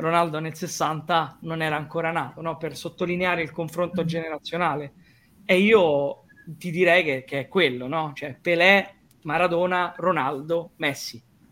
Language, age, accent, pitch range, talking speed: Italian, 20-39, native, 150-180 Hz, 140 wpm